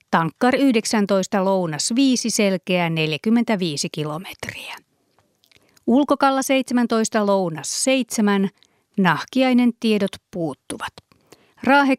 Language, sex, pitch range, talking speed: Finnish, female, 185-235 Hz, 75 wpm